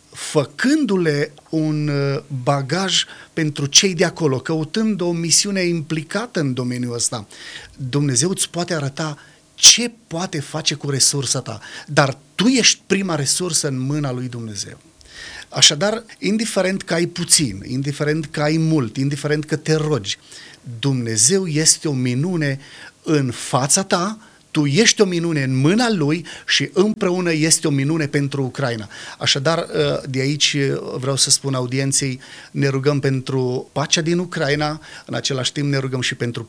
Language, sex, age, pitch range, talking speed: Romanian, male, 30-49, 135-170 Hz, 145 wpm